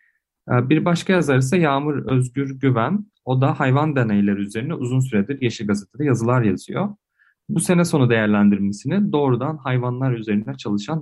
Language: Turkish